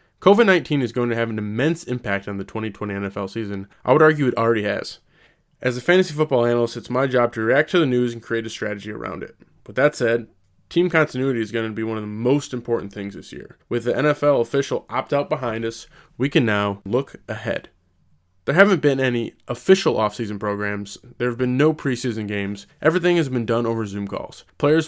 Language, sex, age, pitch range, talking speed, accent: English, male, 20-39, 110-140 Hz, 210 wpm, American